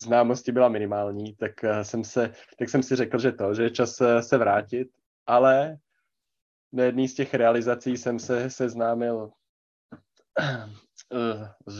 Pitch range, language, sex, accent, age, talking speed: 105-120 Hz, Czech, male, native, 20-39, 135 wpm